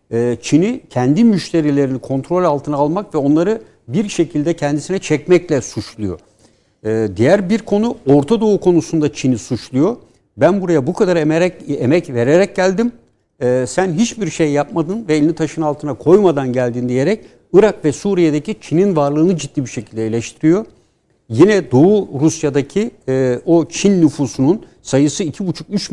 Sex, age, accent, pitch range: male, 60-79, native, 130-170 Hz